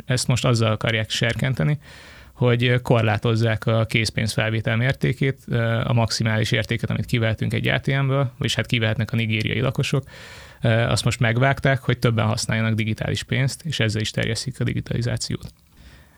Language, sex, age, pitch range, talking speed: Hungarian, male, 20-39, 110-125 Hz, 140 wpm